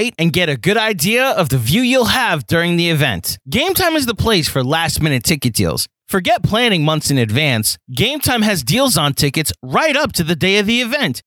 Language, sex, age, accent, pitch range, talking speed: English, male, 30-49, American, 140-215 Hz, 210 wpm